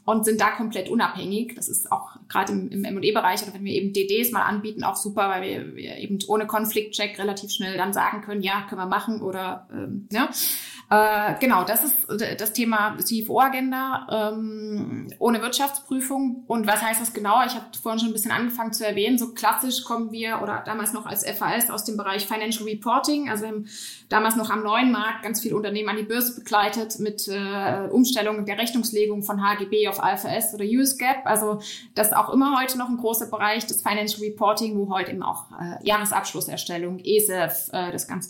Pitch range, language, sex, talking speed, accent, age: 205-230 Hz, German, female, 190 wpm, German, 20-39